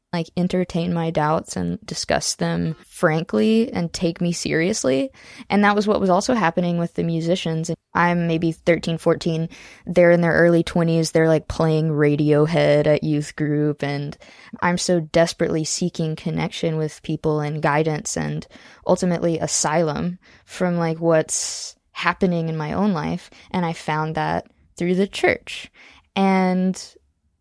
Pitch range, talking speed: 160-180 Hz, 145 wpm